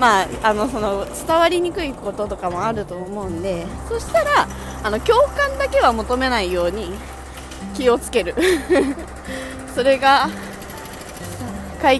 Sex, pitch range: female, 195-285 Hz